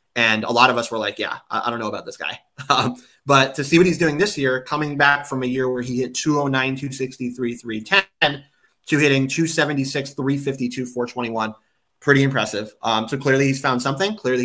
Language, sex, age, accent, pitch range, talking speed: English, male, 30-49, American, 120-145 Hz, 200 wpm